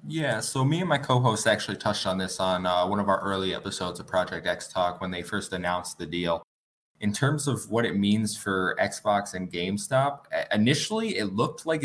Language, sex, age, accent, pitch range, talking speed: English, male, 20-39, American, 95-110 Hz, 210 wpm